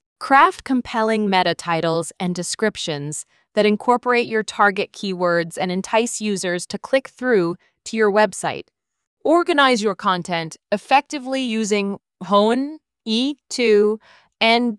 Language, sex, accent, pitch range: English, female, American, 190-250 Hz